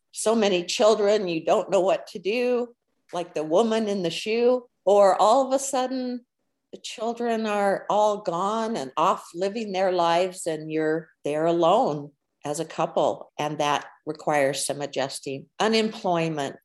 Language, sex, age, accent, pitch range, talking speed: English, female, 50-69, American, 150-185 Hz, 155 wpm